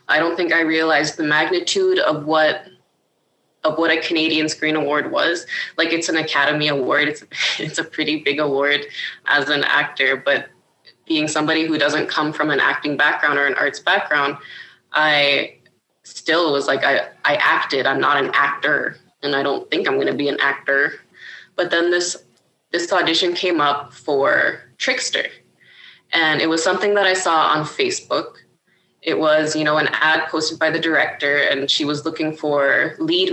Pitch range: 150-165 Hz